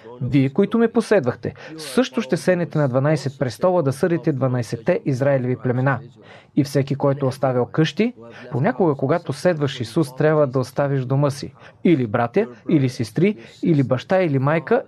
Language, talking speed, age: Bulgarian, 150 wpm, 40-59